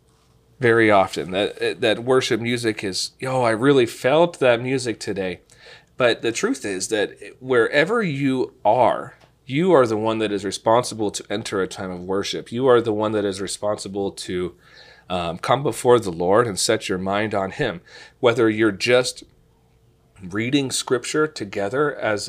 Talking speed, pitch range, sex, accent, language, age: 165 wpm, 105-130 Hz, male, American, English, 40-59